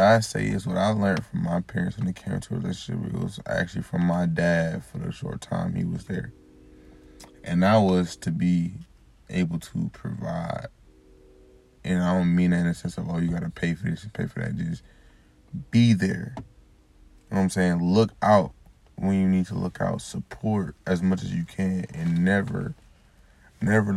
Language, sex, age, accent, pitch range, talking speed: English, male, 20-39, American, 85-100 Hz, 195 wpm